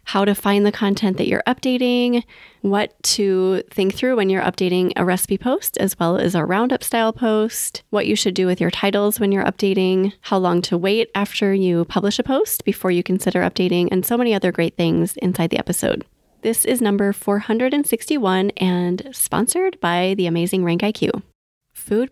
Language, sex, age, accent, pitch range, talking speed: English, female, 30-49, American, 180-225 Hz, 185 wpm